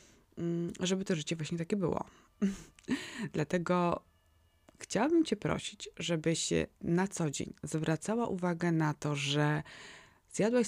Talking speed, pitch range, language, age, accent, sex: 120 wpm, 155-185 Hz, Polish, 20-39, native, female